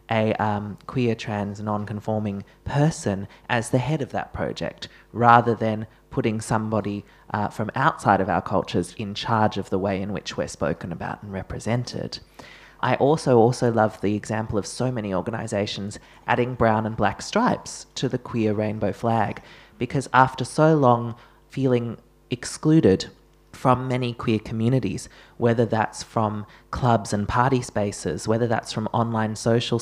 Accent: Australian